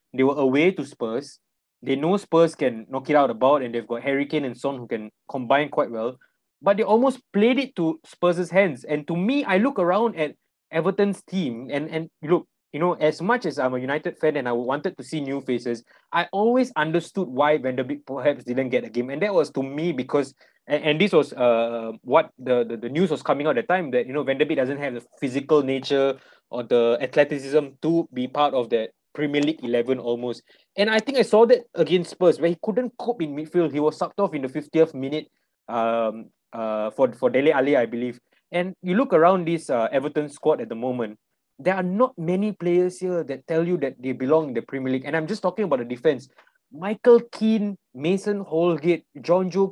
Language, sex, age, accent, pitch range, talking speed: English, male, 20-39, Malaysian, 135-185 Hz, 220 wpm